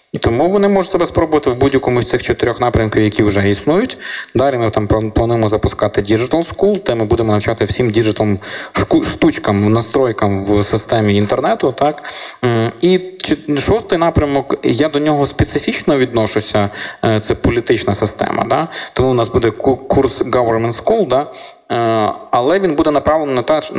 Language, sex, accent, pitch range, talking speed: Ukrainian, male, native, 105-125 Hz, 145 wpm